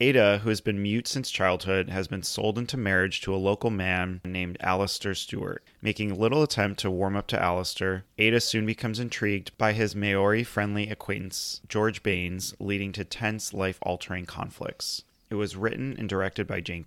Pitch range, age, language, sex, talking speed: 95-110 Hz, 30-49, English, male, 175 wpm